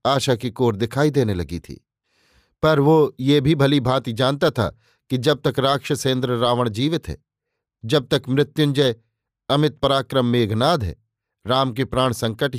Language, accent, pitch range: Hindi, native, 120-145 Hz